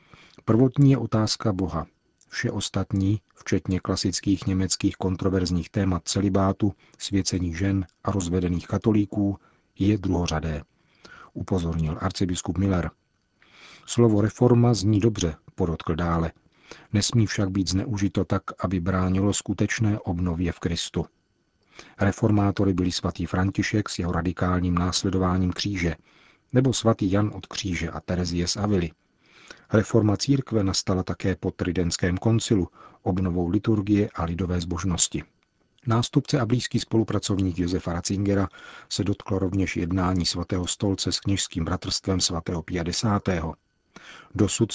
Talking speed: 115 wpm